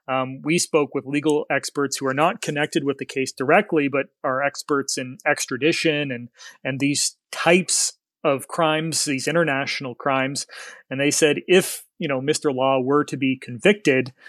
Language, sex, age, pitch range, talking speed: English, male, 30-49, 135-160 Hz, 170 wpm